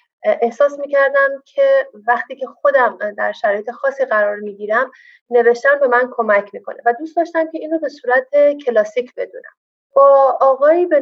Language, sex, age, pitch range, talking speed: Persian, female, 30-49, 220-295 Hz, 160 wpm